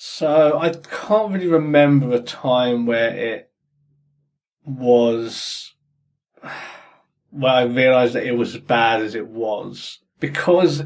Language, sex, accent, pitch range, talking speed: English, male, British, 120-145 Hz, 120 wpm